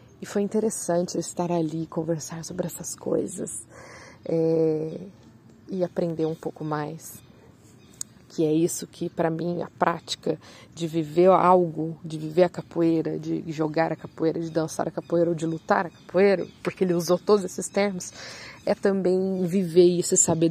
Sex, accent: female, Brazilian